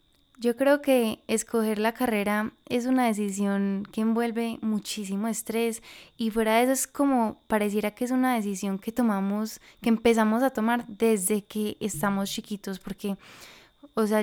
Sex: female